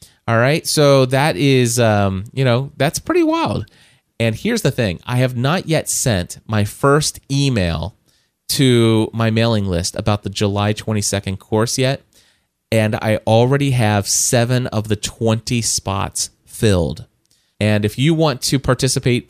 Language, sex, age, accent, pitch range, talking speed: English, male, 30-49, American, 105-130 Hz, 150 wpm